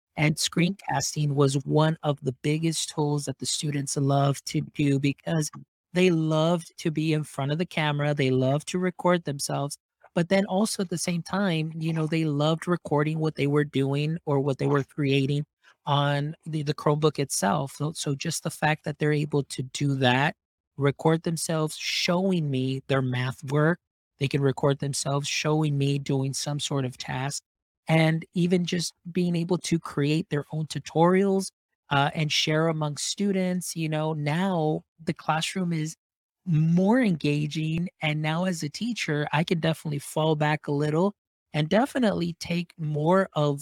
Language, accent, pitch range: English, American, 145-170 Hz